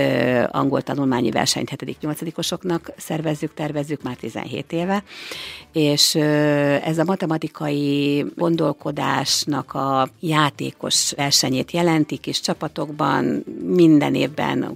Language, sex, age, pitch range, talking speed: Hungarian, female, 50-69, 140-165 Hz, 90 wpm